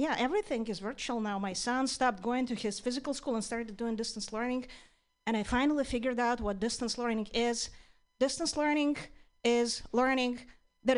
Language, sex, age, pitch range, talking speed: English, female, 40-59, 230-315 Hz, 175 wpm